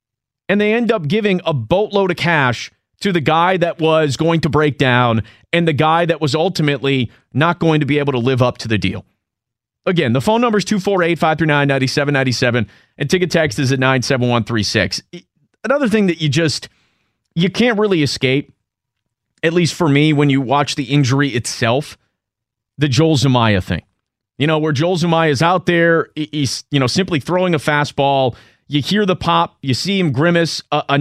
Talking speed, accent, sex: 205 wpm, American, male